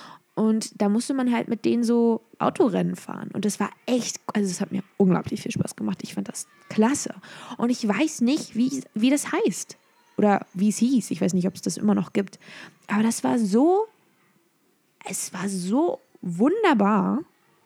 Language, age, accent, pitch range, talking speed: German, 20-39, German, 190-240 Hz, 185 wpm